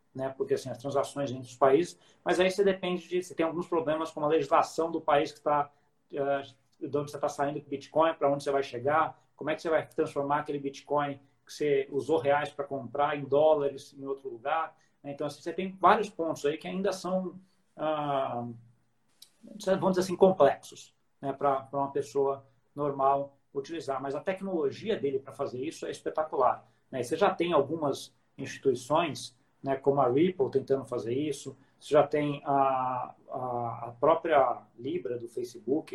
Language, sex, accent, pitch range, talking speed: Portuguese, male, Brazilian, 135-165 Hz, 185 wpm